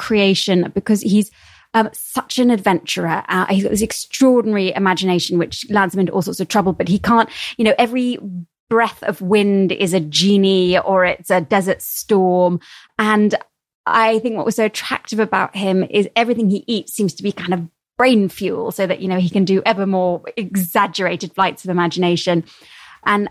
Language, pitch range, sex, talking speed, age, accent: English, 185-225 Hz, female, 185 wpm, 20-39, British